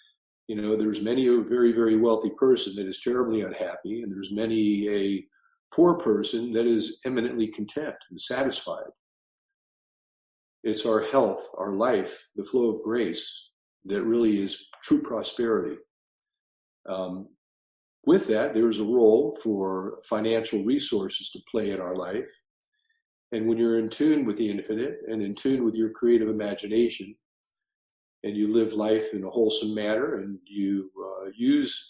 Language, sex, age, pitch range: English, male, 50-69, 100-120 Hz